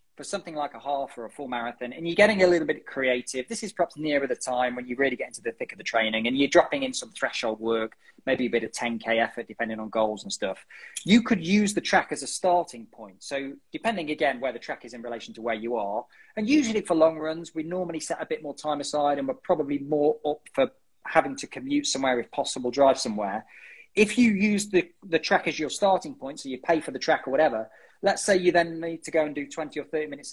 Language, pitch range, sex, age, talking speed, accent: English, 130-185 Hz, male, 20-39, 255 wpm, British